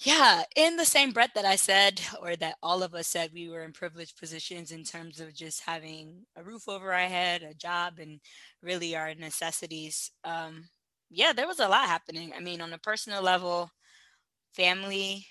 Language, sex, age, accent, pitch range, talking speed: English, female, 20-39, American, 160-185 Hz, 190 wpm